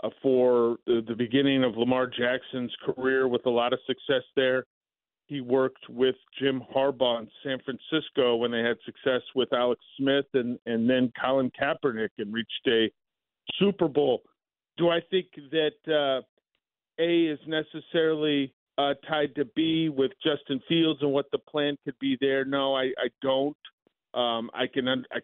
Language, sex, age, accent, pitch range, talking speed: English, male, 40-59, American, 125-150 Hz, 160 wpm